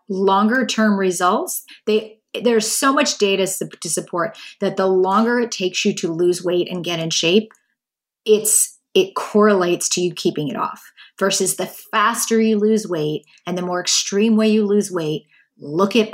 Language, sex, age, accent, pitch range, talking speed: English, female, 30-49, American, 185-225 Hz, 180 wpm